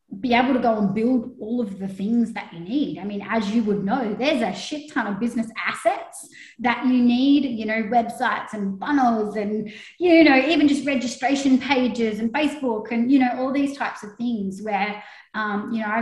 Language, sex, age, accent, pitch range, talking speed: English, female, 20-39, Australian, 205-265 Hz, 205 wpm